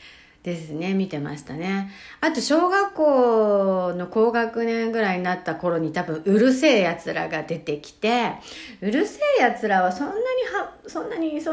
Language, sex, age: Japanese, female, 60-79